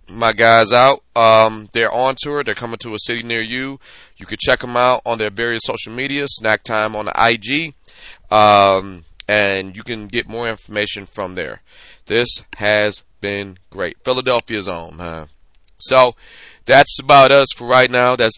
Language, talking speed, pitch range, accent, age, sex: English, 175 wpm, 95-120 Hz, American, 30-49, male